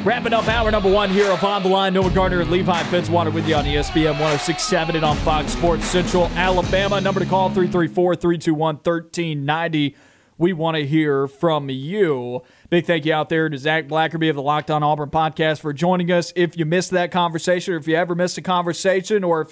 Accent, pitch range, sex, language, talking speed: American, 155-180 Hz, male, English, 210 wpm